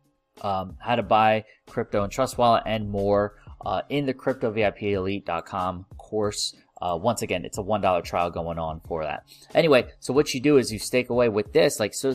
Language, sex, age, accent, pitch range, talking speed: English, male, 20-39, American, 95-125 Hz, 205 wpm